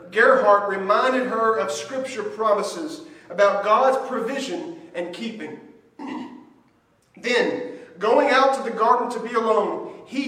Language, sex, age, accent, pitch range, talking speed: English, male, 40-59, American, 180-250 Hz, 125 wpm